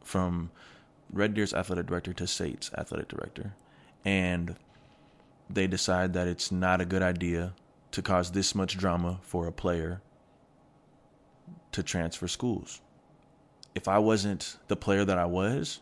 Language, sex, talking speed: English, male, 140 wpm